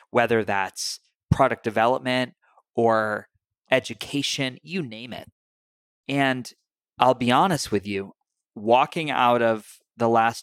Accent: American